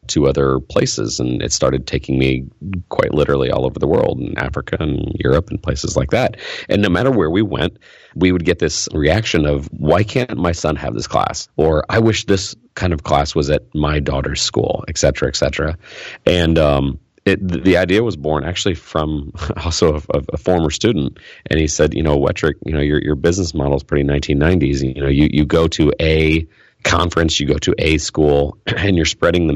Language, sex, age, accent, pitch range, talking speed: English, male, 40-59, American, 70-85 Hz, 210 wpm